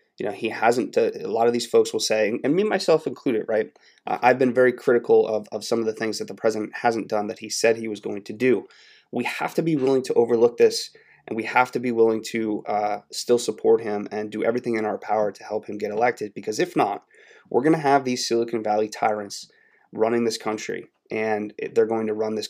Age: 20-39